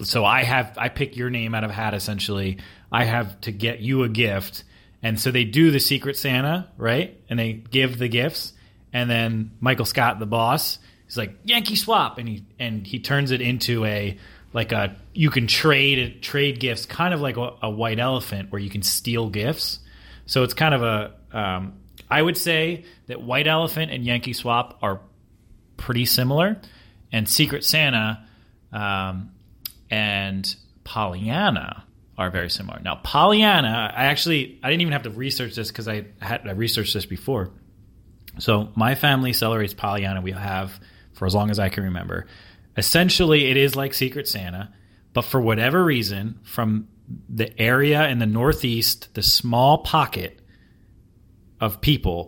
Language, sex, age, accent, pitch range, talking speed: English, male, 30-49, American, 100-130 Hz, 170 wpm